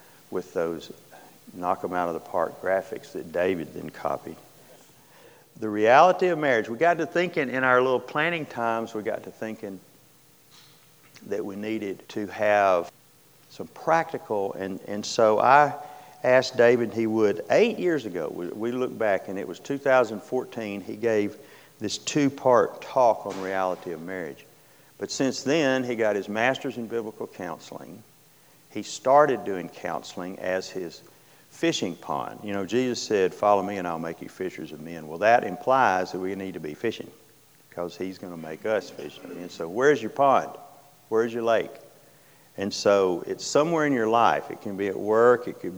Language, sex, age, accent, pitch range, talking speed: English, male, 50-69, American, 95-125 Hz, 175 wpm